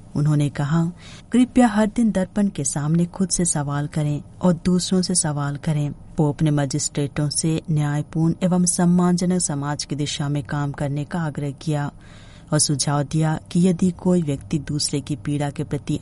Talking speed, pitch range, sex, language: 170 wpm, 145-185 Hz, female, Hindi